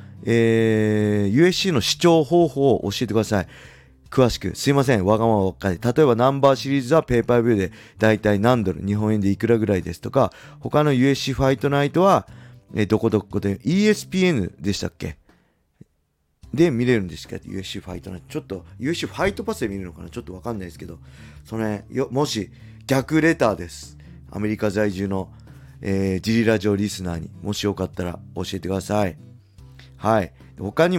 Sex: male